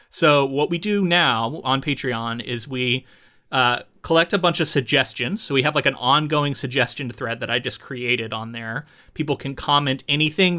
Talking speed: 185 wpm